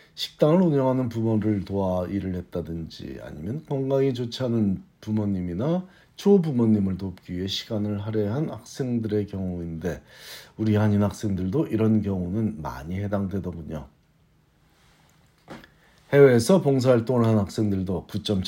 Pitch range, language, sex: 95-130 Hz, Korean, male